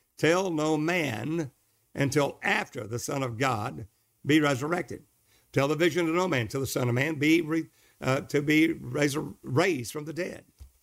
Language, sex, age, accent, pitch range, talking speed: English, male, 60-79, American, 115-155 Hz, 175 wpm